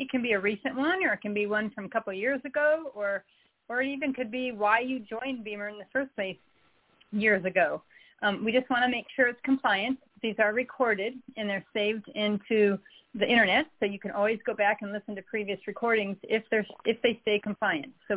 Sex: female